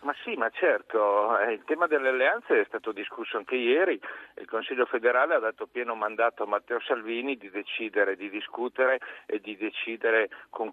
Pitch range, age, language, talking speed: 115-170 Hz, 50-69, Italian, 175 wpm